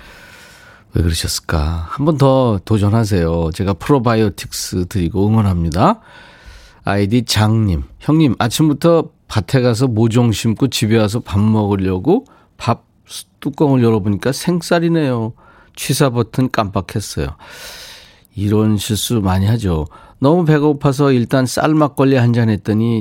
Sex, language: male, Korean